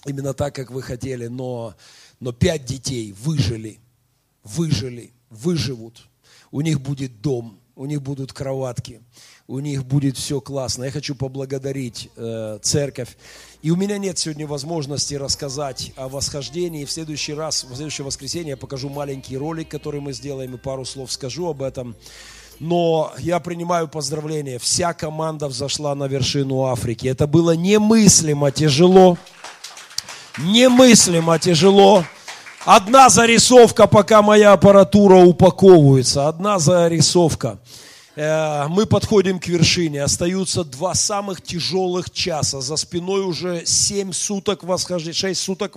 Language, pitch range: Russian, 135-185 Hz